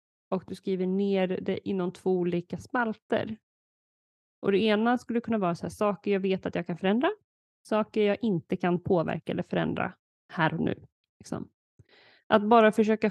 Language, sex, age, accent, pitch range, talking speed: Swedish, female, 30-49, native, 180-225 Hz, 175 wpm